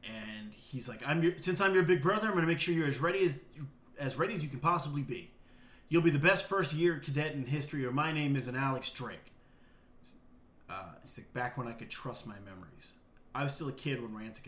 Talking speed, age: 250 wpm, 30-49